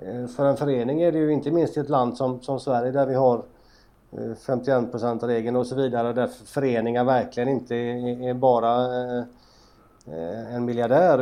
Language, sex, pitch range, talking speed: English, male, 120-140 Hz, 175 wpm